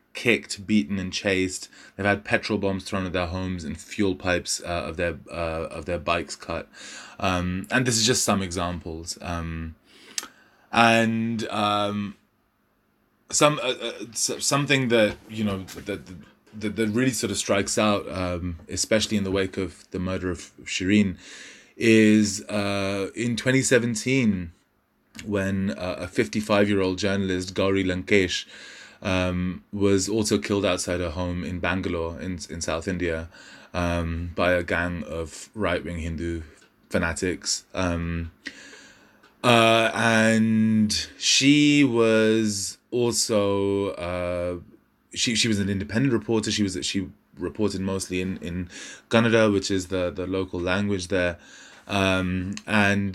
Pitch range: 90-105 Hz